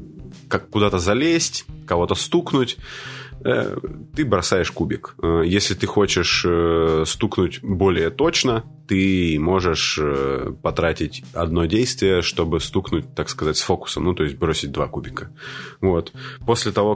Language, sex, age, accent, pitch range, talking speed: Russian, male, 20-39, native, 85-105 Hz, 120 wpm